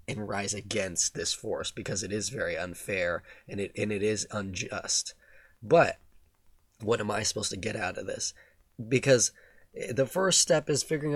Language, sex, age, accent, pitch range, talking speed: English, male, 20-39, American, 100-125 Hz, 165 wpm